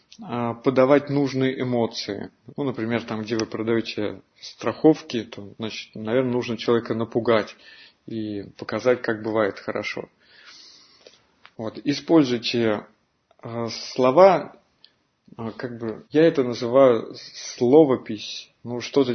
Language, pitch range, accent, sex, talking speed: Russian, 115-140 Hz, native, male, 100 wpm